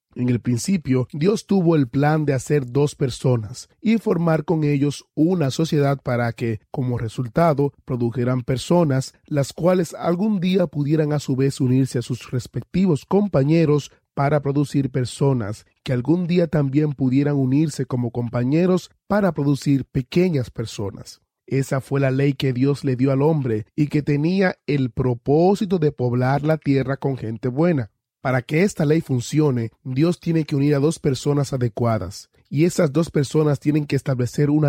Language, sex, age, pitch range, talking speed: Spanish, male, 30-49, 130-155 Hz, 165 wpm